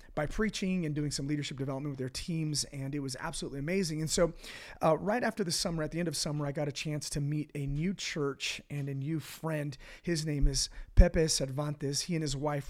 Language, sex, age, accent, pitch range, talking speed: English, male, 30-49, American, 145-170 Hz, 230 wpm